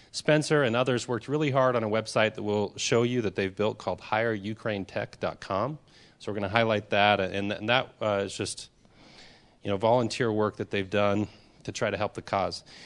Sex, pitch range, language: male, 100-115 Hz, English